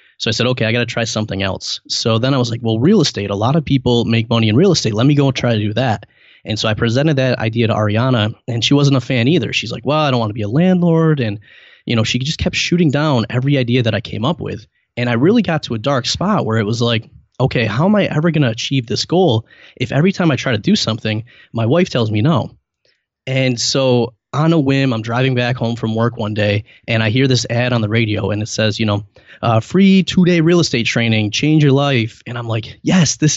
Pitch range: 110-135 Hz